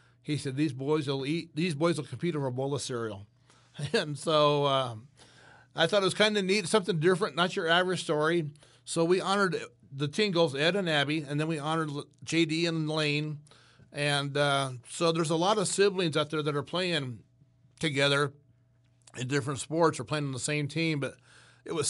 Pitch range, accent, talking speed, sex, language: 135-165 Hz, American, 190 wpm, male, English